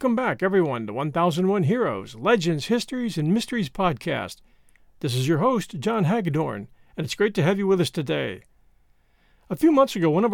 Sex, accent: male, American